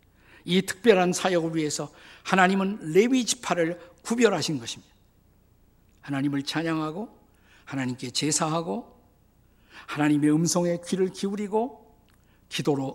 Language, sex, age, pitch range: Korean, male, 50-69, 145-210 Hz